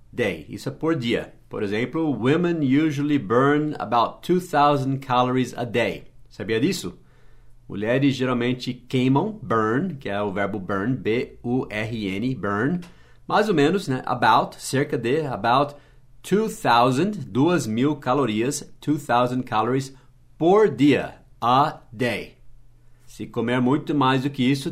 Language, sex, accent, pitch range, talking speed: English, male, Brazilian, 120-140 Hz, 135 wpm